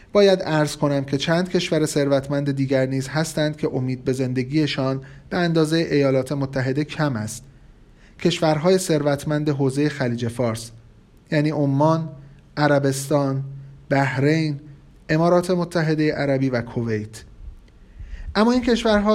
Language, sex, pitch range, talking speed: Persian, male, 130-175 Hz, 115 wpm